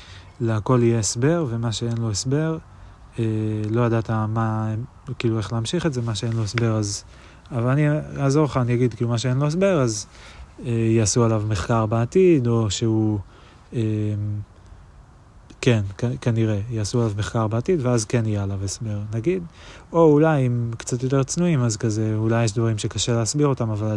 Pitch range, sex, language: 105-120 Hz, male, Hebrew